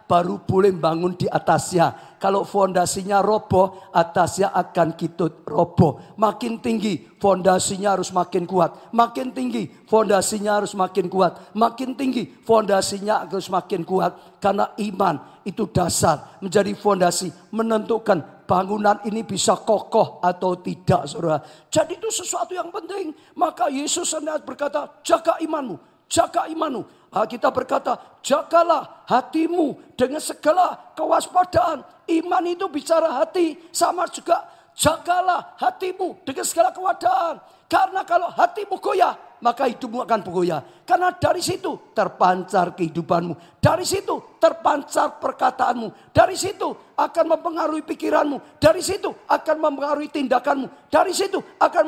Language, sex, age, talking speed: Indonesian, male, 50-69, 120 wpm